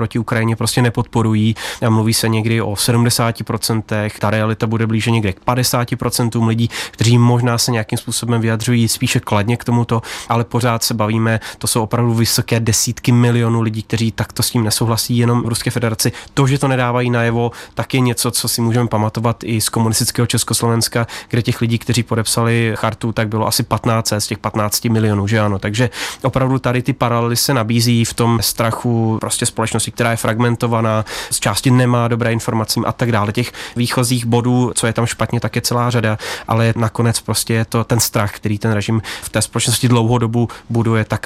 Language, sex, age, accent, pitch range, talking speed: Czech, male, 20-39, native, 115-125 Hz, 190 wpm